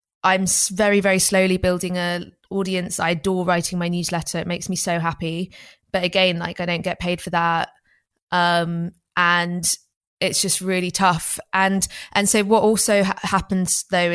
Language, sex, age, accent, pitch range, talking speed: English, female, 20-39, British, 175-205 Hz, 165 wpm